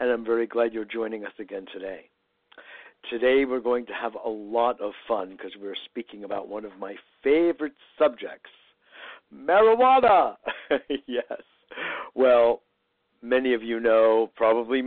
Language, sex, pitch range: English, male, 110-150 Hz